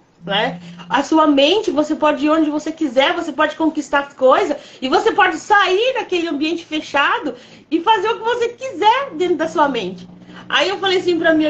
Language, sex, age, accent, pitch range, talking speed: Portuguese, female, 30-49, Brazilian, 255-330 Hz, 200 wpm